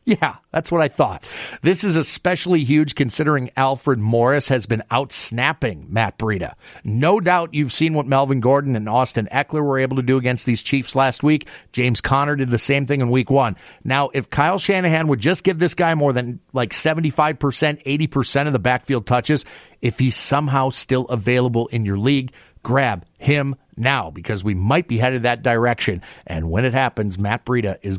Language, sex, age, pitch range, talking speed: English, male, 40-59, 115-150 Hz, 190 wpm